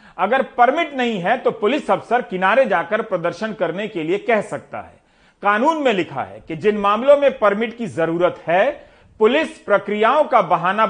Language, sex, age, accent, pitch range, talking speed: Hindi, male, 40-59, native, 175-225 Hz, 175 wpm